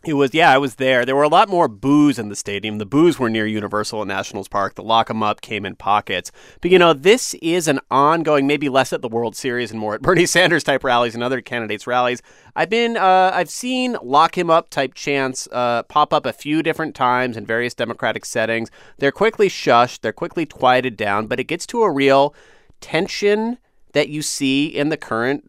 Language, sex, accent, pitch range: English, male, American, 115-150 Hz